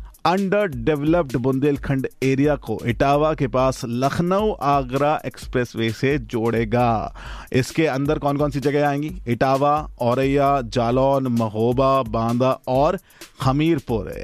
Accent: native